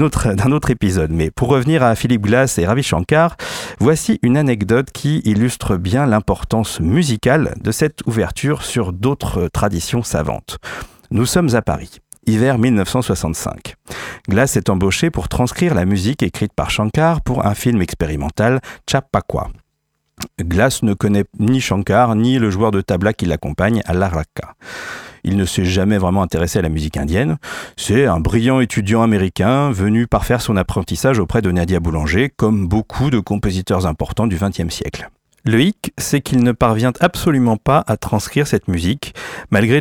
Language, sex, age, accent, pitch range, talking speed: French, male, 50-69, French, 95-130 Hz, 165 wpm